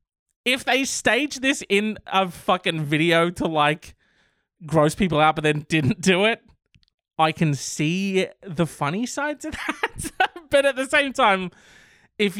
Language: English